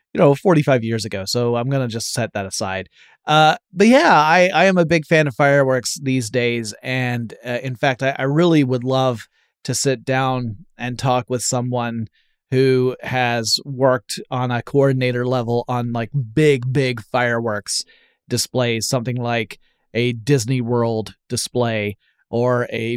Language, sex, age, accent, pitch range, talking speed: English, male, 30-49, American, 120-140 Hz, 160 wpm